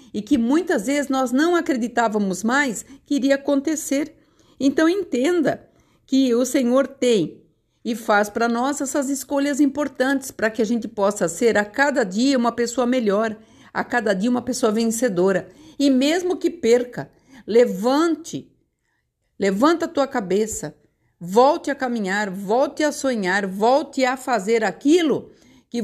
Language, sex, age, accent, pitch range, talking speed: Portuguese, female, 50-69, Brazilian, 210-270 Hz, 145 wpm